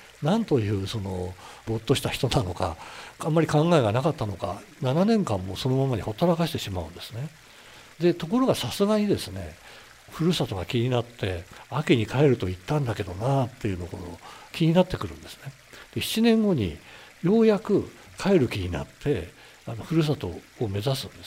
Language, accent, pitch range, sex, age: Japanese, native, 105-175 Hz, male, 60-79